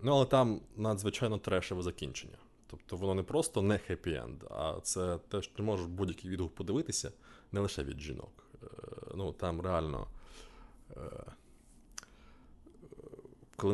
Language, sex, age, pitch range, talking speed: Ukrainian, male, 20-39, 90-120 Hz, 125 wpm